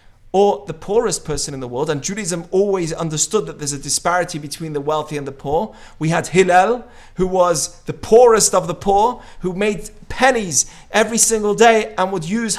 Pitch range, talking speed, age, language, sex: 160-215 Hz, 190 wpm, 30-49, English, male